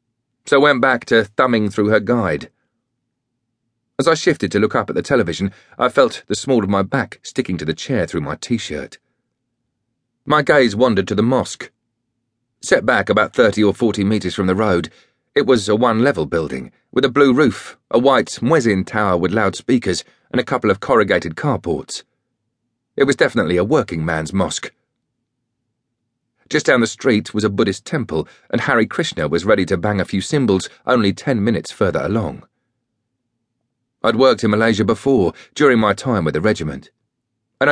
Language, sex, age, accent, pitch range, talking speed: English, male, 40-59, British, 100-125 Hz, 175 wpm